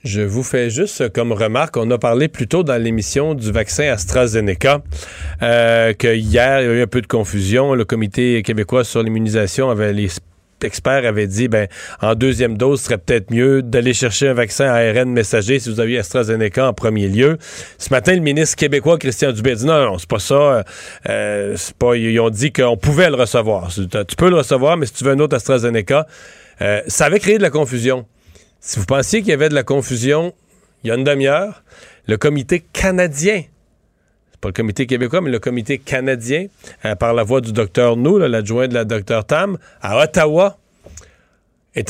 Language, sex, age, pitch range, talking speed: French, male, 40-59, 110-140 Hz, 205 wpm